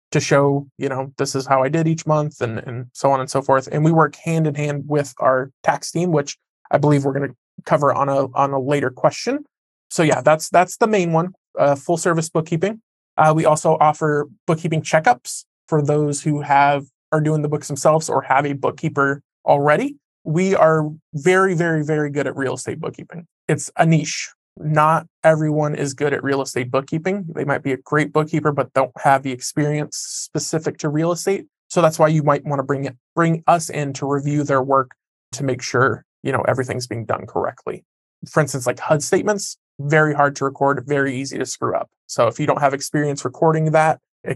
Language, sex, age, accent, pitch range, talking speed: English, male, 20-39, American, 140-160 Hz, 210 wpm